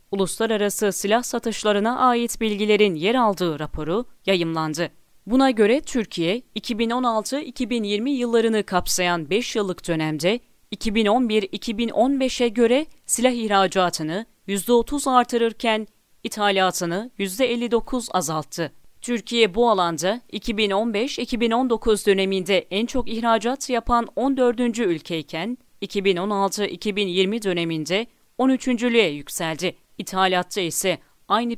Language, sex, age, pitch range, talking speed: Turkish, female, 30-49, 185-240 Hz, 85 wpm